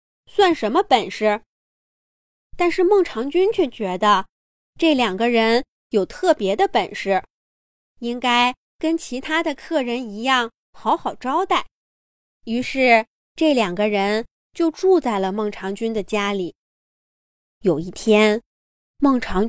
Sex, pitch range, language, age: female, 215-305 Hz, Chinese, 20-39